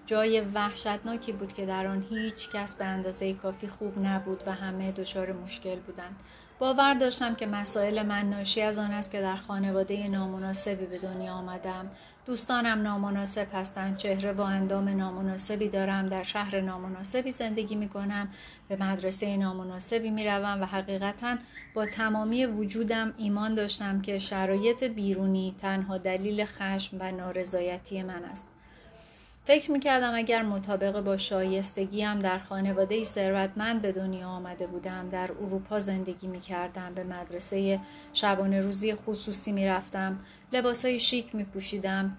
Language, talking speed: Persian, 140 wpm